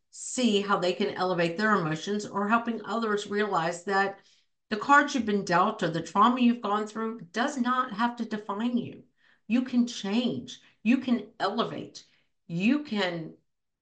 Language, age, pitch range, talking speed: English, 50-69, 165-220 Hz, 160 wpm